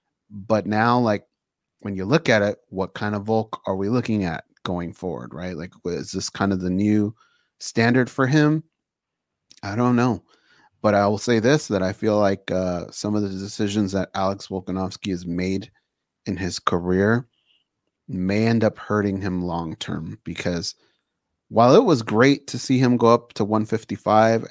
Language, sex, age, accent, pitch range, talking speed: English, male, 30-49, American, 95-115 Hz, 180 wpm